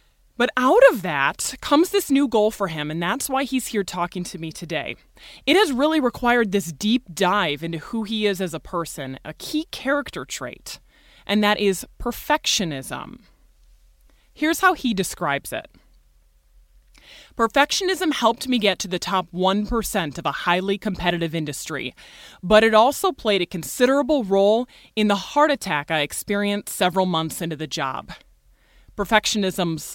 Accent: American